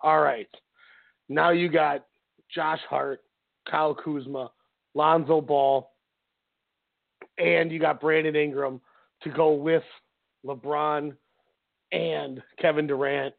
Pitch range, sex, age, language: 145-170 Hz, male, 40-59, English